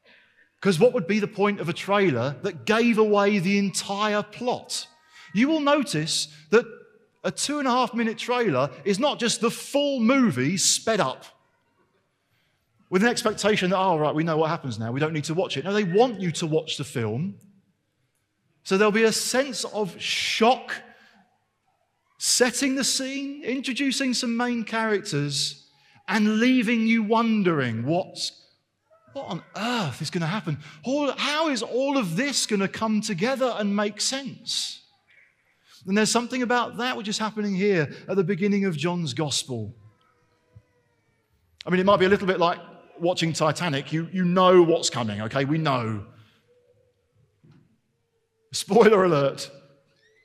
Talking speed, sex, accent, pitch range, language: 155 wpm, male, British, 135-230 Hz, English